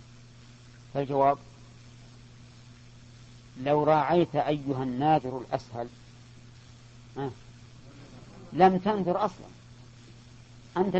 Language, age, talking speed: Arabic, 40-59, 55 wpm